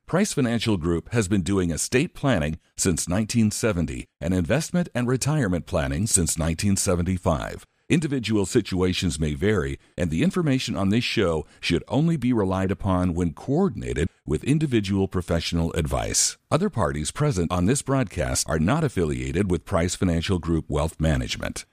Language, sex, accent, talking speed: English, male, American, 145 wpm